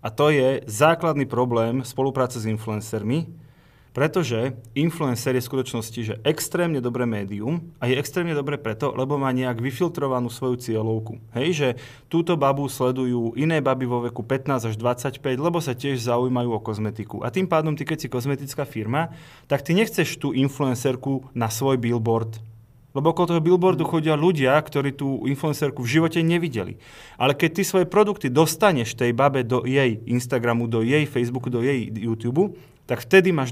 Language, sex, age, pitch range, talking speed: Slovak, male, 30-49, 120-150 Hz, 170 wpm